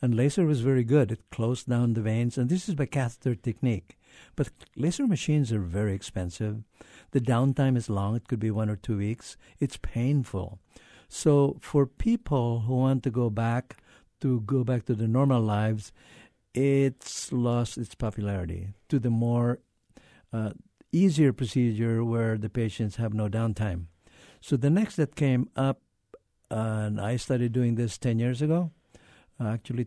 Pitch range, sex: 110-135 Hz, male